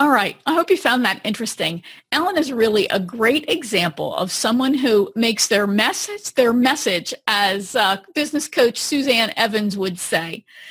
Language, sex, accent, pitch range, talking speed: English, female, American, 225-290 Hz, 170 wpm